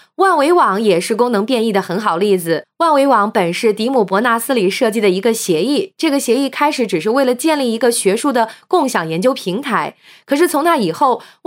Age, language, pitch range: 20-39, Chinese, 220-310 Hz